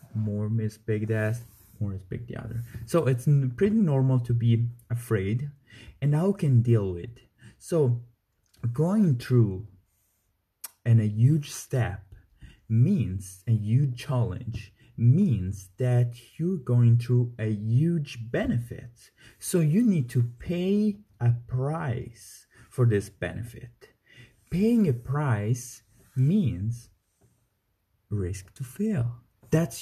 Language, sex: English, male